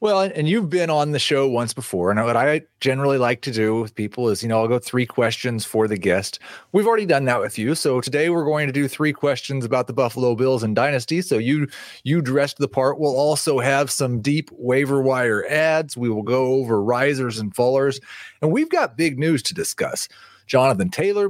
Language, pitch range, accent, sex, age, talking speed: English, 120-160 Hz, American, male, 30-49, 220 wpm